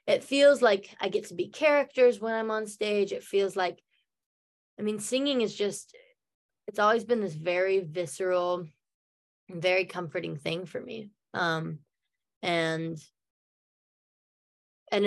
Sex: female